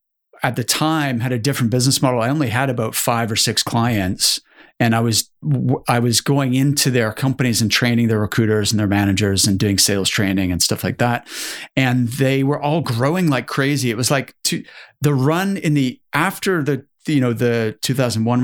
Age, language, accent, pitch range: 30-49, English, American, 115-140 Hz